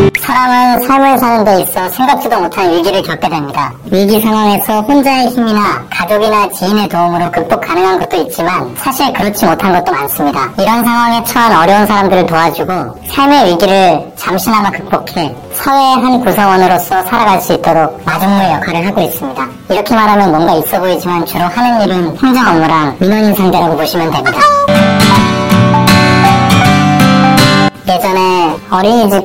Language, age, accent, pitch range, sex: Korean, 40-59, native, 170-215 Hz, male